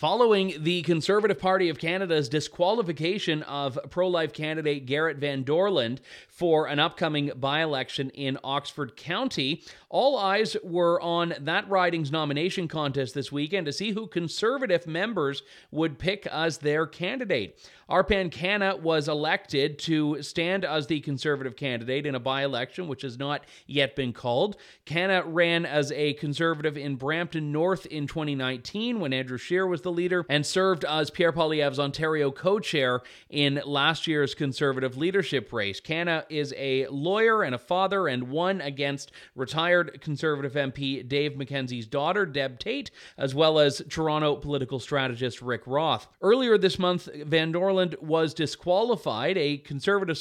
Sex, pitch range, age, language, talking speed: male, 140-175 Hz, 30-49, English, 145 wpm